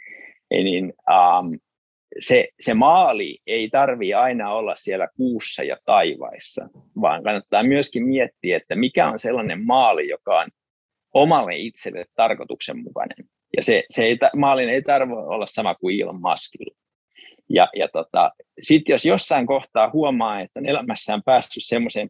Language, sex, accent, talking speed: Finnish, male, native, 140 wpm